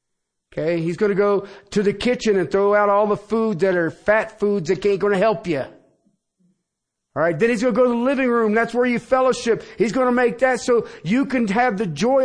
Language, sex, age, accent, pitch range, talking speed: English, male, 50-69, American, 150-240 Hz, 245 wpm